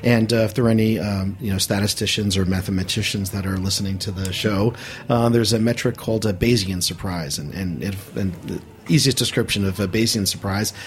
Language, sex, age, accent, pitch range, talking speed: English, male, 40-59, American, 95-115 Hz, 205 wpm